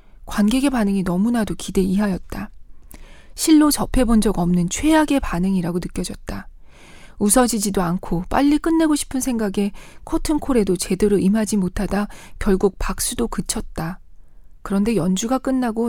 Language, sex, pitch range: Korean, female, 185-240 Hz